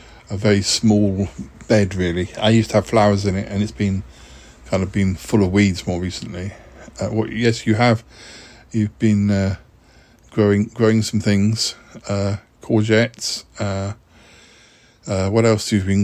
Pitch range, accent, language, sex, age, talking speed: 105-120 Hz, British, English, male, 50-69, 170 wpm